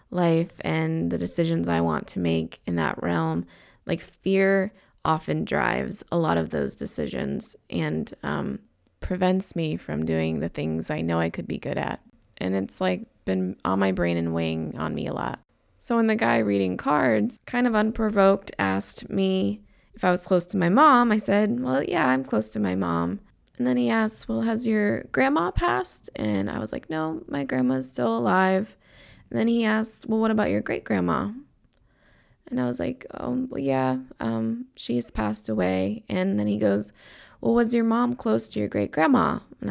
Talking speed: 190 wpm